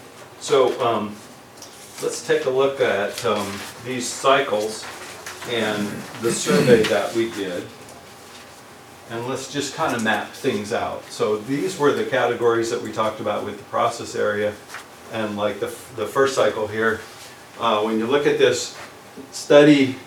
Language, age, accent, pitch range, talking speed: English, 50-69, American, 105-125 Hz, 155 wpm